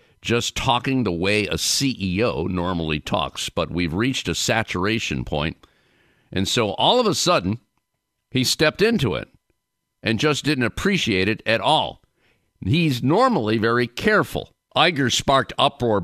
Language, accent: English, American